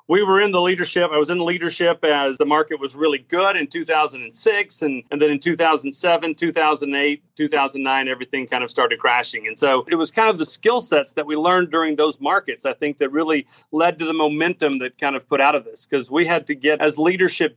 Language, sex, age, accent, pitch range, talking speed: English, male, 40-59, American, 140-170 Hz, 230 wpm